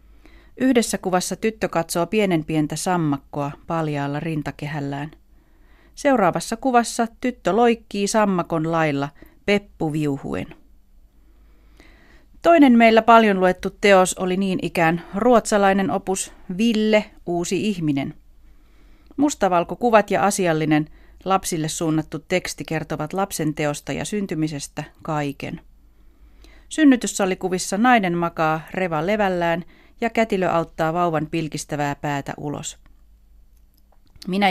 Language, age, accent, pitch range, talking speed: Finnish, 40-59, native, 155-205 Hz, 95 wpm